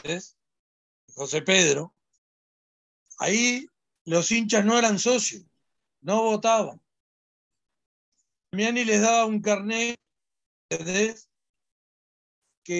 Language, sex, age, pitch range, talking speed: Spanish, male, 60-79, 170-220 Hz, 85 wpm